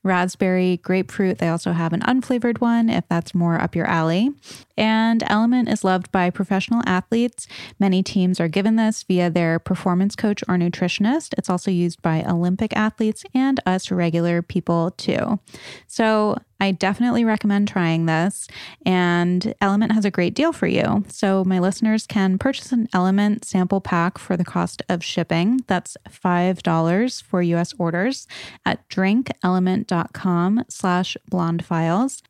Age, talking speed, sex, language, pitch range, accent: 20-39, 150 wpm, female, English, 180-220 Hz, American